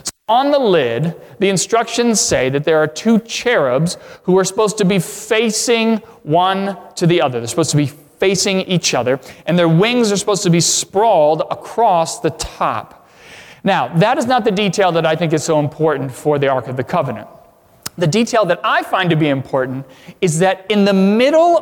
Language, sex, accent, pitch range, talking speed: English, male, American, 160-215 Hz, 195 wpm